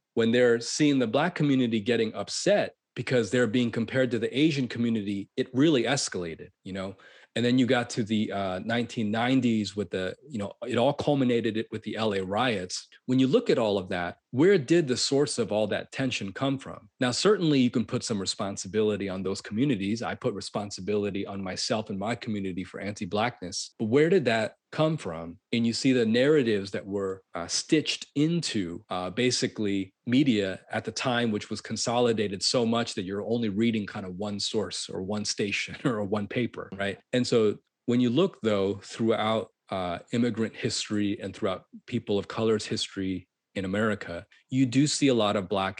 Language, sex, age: English, male, 30-49